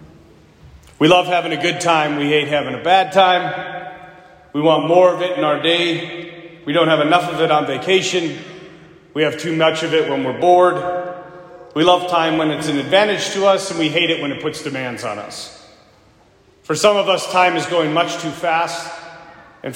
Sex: male